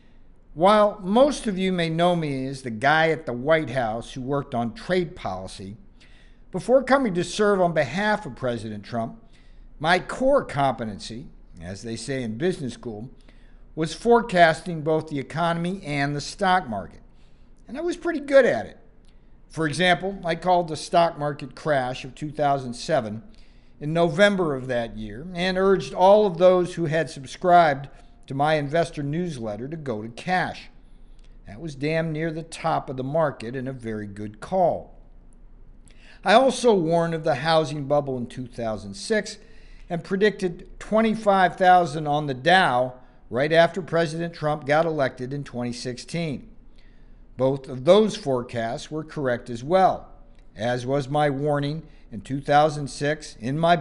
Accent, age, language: American, 50-69, English